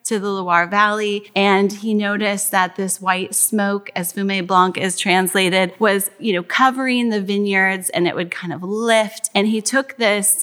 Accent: American